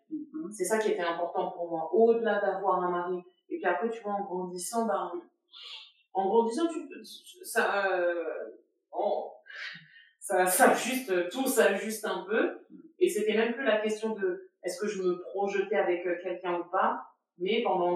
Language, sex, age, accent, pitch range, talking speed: French, female, 30-49, French, 185-230 Hz, 170 wpm